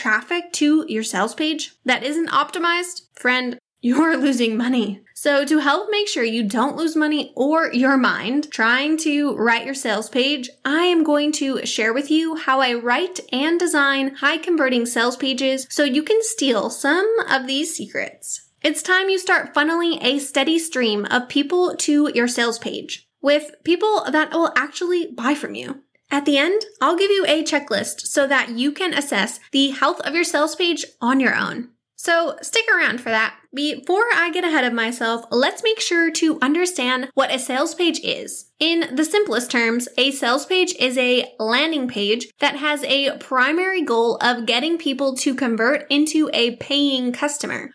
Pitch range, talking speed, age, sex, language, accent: 250-320 Hz, 180 wpm, 10-29, female, English, American